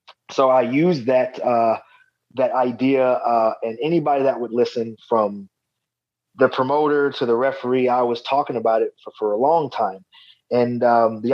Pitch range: 115-135 Hz